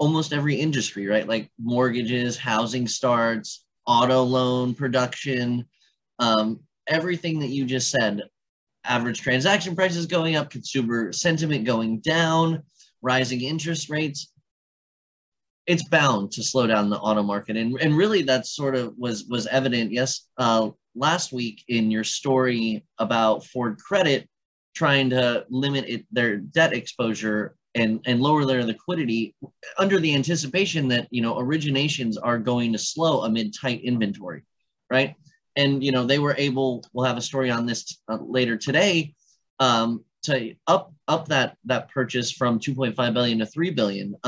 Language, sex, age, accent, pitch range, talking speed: English, male, 20-39, American, 115-145 Hz, 150 wpm